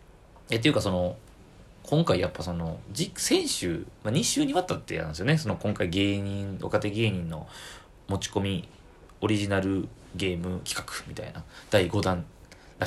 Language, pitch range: Japanese, 90-110 Hz